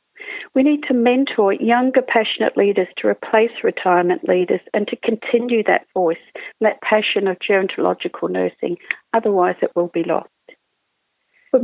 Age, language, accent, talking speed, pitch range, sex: 50-69, English, British, 140 wpm, 195-250 Hz, female